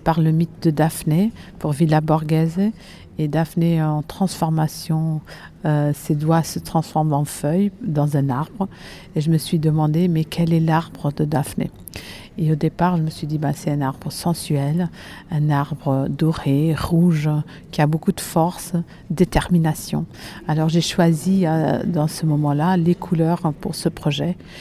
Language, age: French, 50-69